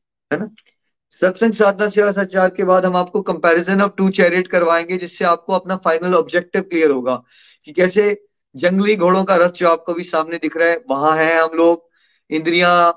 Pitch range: 155-185 Hz